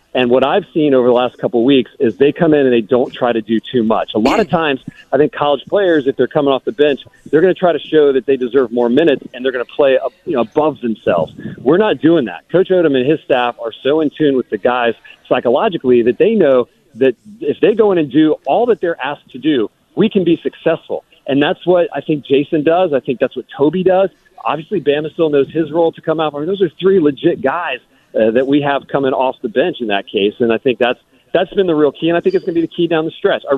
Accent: American